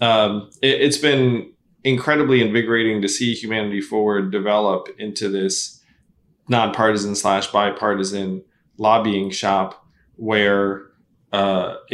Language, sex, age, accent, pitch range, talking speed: English, male, 20-39, American, 105-130 Hz, 100 wpm